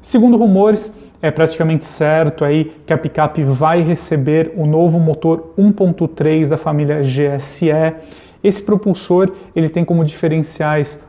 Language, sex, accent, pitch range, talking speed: Portuguese, male, Brazilian, 155-175 Hz, 130 wpm